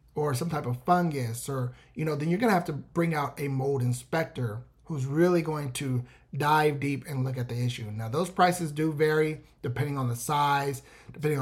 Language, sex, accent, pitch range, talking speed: English, male, American, 130-160 Hz, 205 wpm